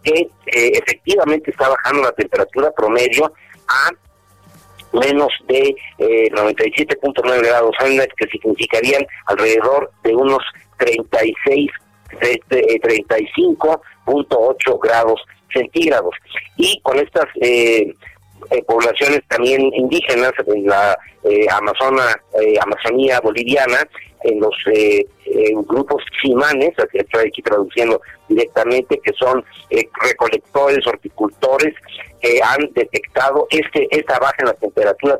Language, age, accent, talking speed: Spanish, 50-69, Mexican, 110 wpm